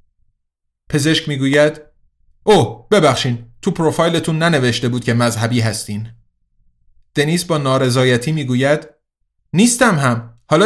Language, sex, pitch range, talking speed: Persian, male, 120-160 Hz, 105 wpm